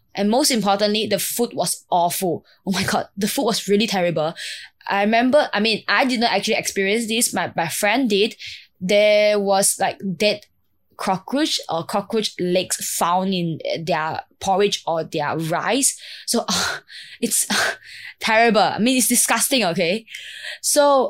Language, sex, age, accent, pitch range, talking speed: English, female, 20-39, Malaysian, 175-225 Hz, 155 wpm